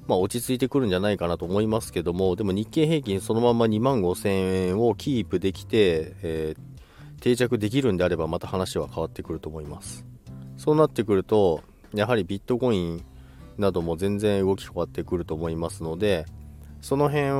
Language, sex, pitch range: Japanese, male, 85-120 Hz